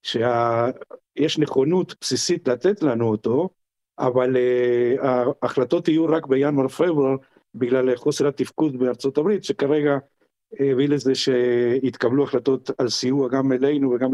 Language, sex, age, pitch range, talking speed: Hebrew, male, 50-69, 130-155 Hz, 120 wpm